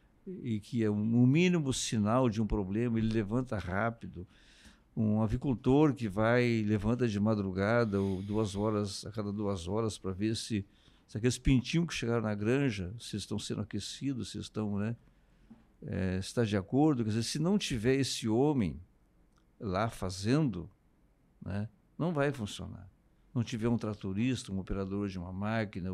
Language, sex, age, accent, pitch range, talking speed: Portuguese, male, 60-79, Brazilian, 100-130 Hz, 150 wpm